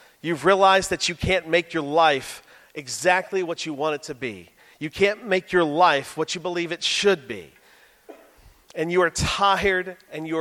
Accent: American